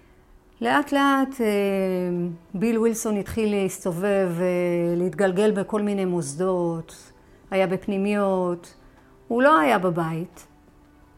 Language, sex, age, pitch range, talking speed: Hebrew, female, 40-59, 180-235 Hz, 85 wpm